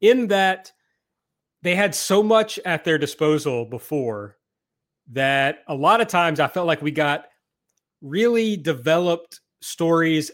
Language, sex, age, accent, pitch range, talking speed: English, male, 30-49, American, 145-190 Hz, 135 wpm